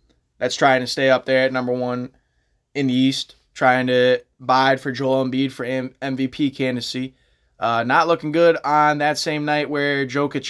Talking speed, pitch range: 185 wpm, 125-145 Hz